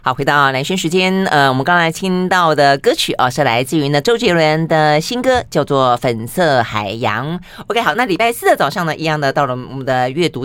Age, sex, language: 30-49, female, Chinese